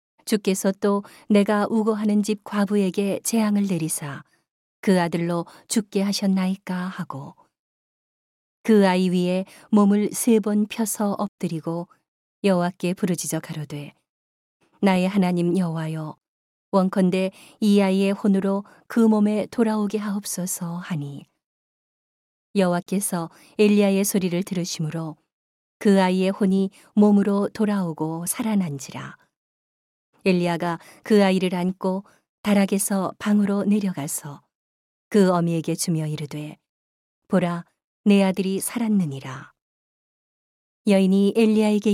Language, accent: Korean, native